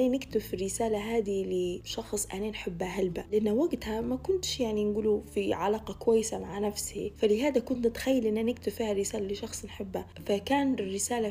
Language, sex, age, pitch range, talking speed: Arabic, female, 20-39, 195-230 Hz, 155 wpm